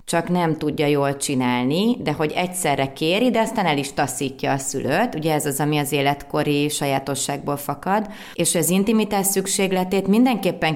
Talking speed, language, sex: 160 wpm, Hungarian, female